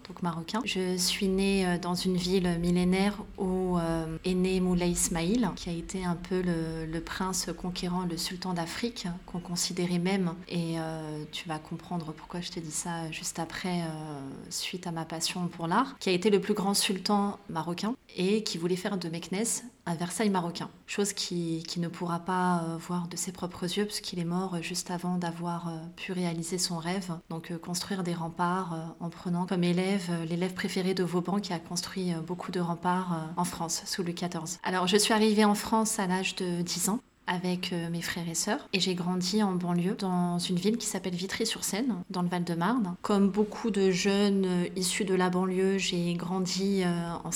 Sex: female